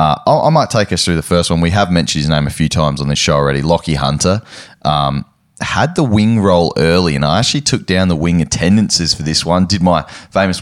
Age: 20-39